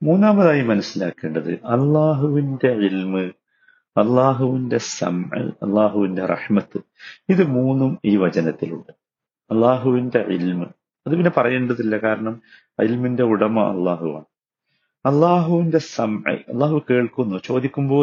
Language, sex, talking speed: Malayalam, male, 85 wpm